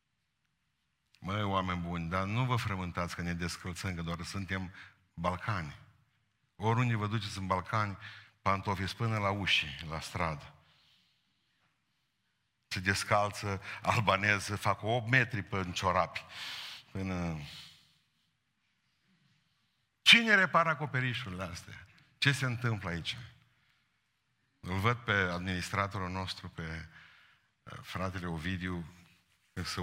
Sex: male